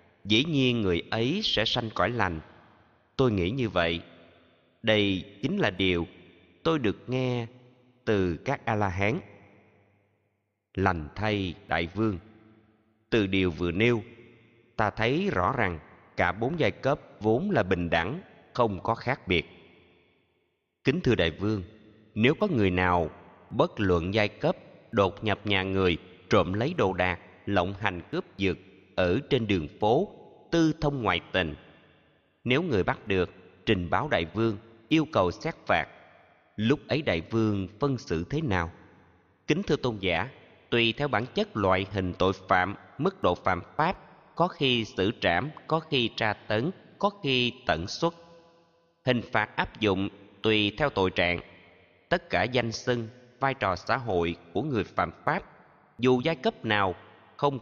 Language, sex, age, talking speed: Vietnamese, male, 30-49, 160 wpm